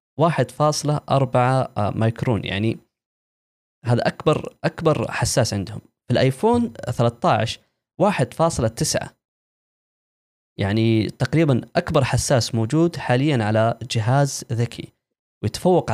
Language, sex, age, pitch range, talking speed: Arabic, male, 20-39, 115-145 Hz, 100 wpm